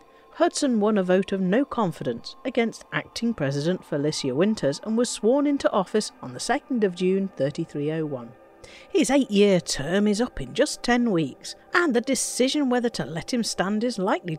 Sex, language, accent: female, English, British